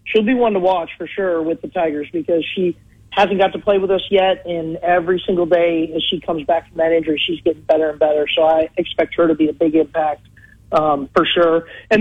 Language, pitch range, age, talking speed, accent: English, 170-200 Hz, 40-59, 240 wpm, American